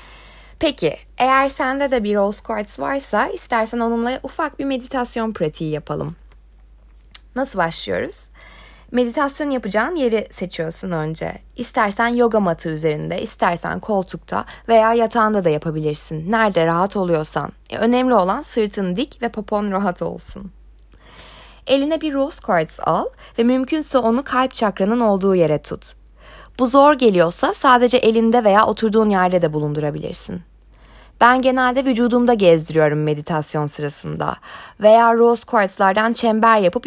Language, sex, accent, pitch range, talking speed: Turkish, female, native, 170-250 Hz, 125 wpm